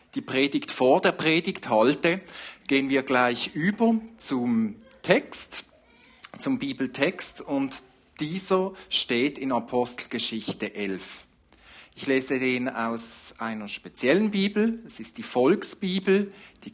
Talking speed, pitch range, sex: 115 wpm, 125-195 Hz, male